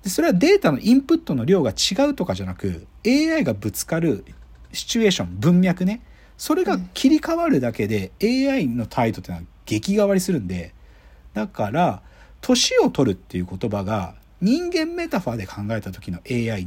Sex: male